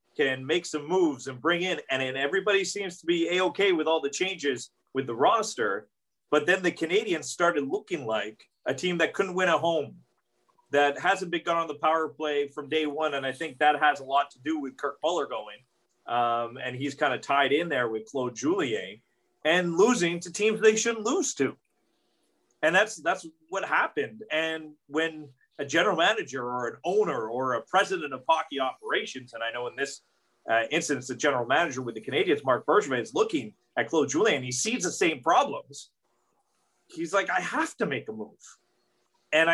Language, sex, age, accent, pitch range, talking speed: English, male, 30-49, American, 140-185 Hz, 195 wpm